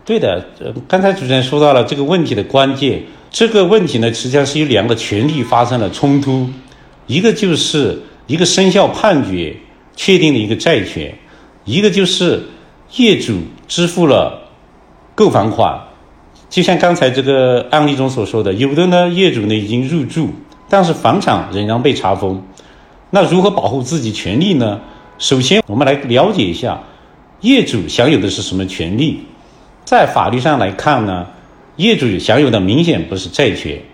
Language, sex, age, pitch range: Chinese, male, 50-69, 120-175 Hz